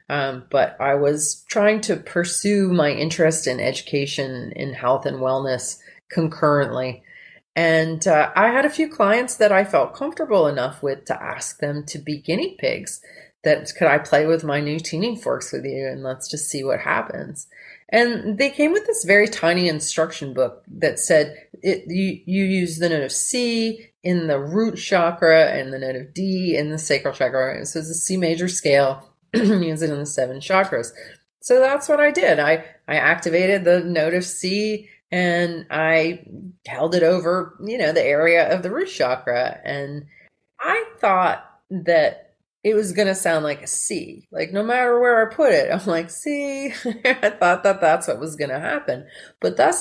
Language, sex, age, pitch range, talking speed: English, female, 30-49, 150-215 Hz, 185 wpm